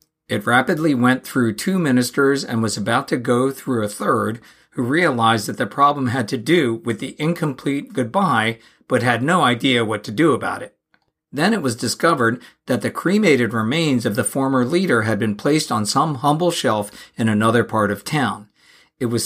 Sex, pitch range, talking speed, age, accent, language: male, 115-150 Hz, 190 wpm, 50-69, American, English